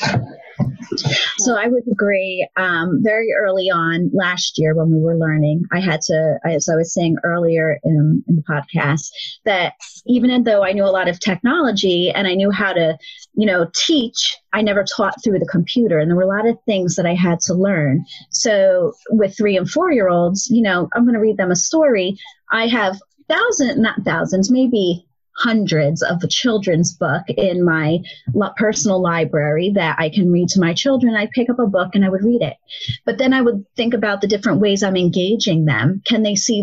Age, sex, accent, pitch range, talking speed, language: 30-49, female, American, 170-220 Hz, 195 wpm, English